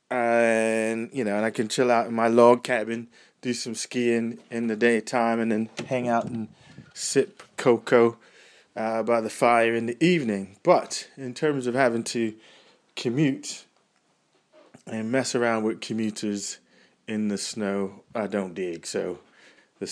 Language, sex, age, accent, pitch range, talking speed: English, male, 20-39, British, 105-135 Hz, 155 wpm